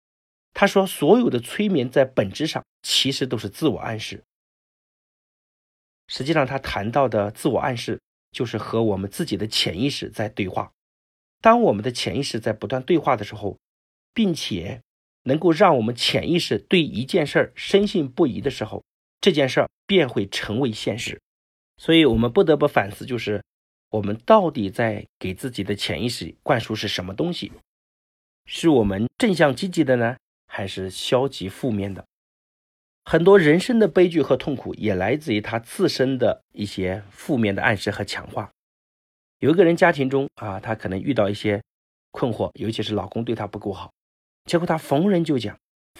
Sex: male